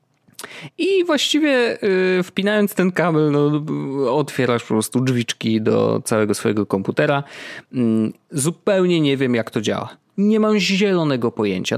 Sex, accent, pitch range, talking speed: male, native, 115-150 Hz, 115 wpm